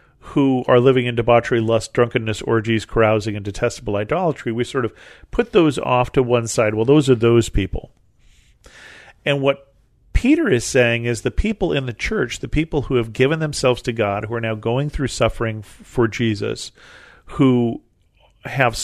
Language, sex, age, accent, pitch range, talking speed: English, male, 40-59, American, 115-150 Hz, 180 wpm